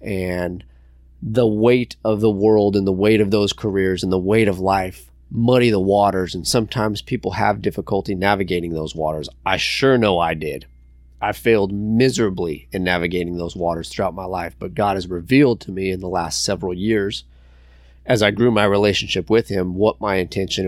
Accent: American